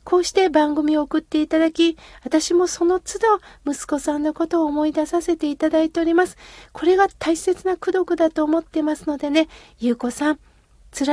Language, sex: Japanese, female